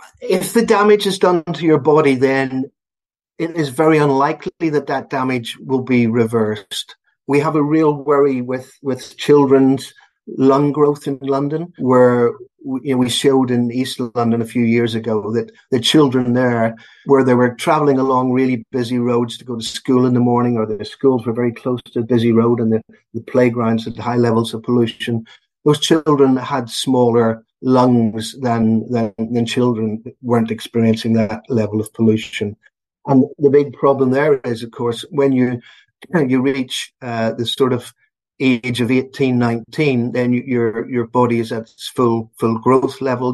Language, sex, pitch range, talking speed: English, male, 115-135 Hz, 180 wpm